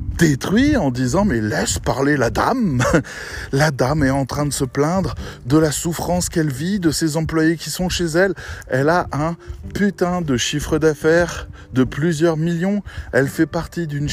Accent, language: French, French